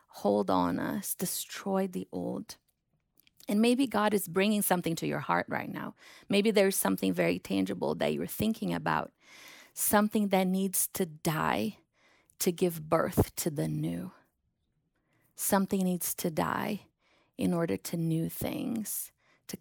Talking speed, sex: 145 wpm, female